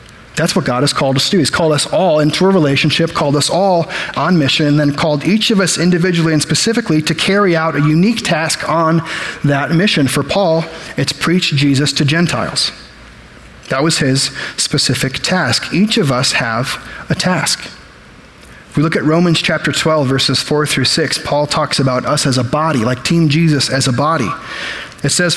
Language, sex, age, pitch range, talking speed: English, male, 30-49, 145-180 Hz, 195 wpm